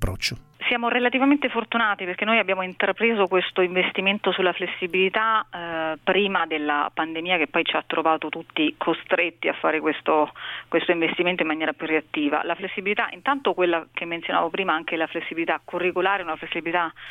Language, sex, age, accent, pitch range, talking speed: Italian, female, 30-49, native, 160-185 Hz, 155 wpm